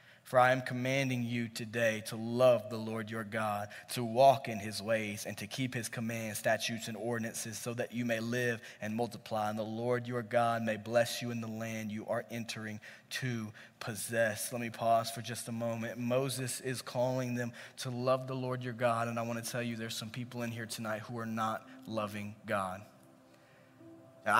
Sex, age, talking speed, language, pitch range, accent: male, 20-39, 200 wpm, English, 110-130 Hz, American